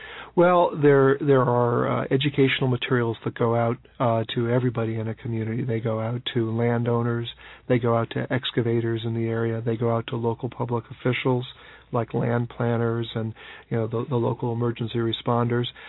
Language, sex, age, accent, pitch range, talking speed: English, male, 50-69, American, 115-135 Hz, 180 wpm